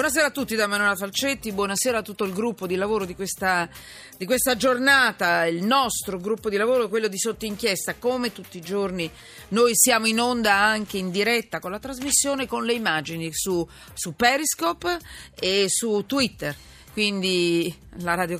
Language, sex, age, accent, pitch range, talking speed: Italian, female, 40-59, native, 175-230 Hz, 175 wpm